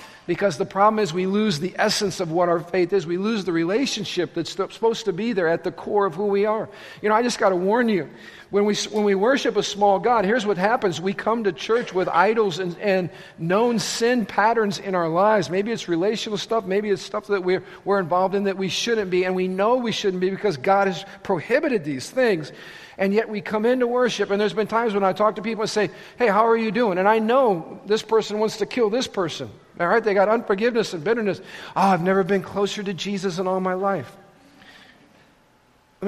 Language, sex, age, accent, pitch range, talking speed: English, male, 50-69, American, 185-220 Hz, 235 wpm